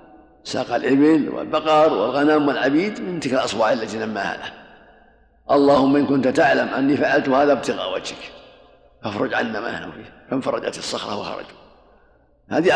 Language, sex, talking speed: Arabic, male, 130 wpm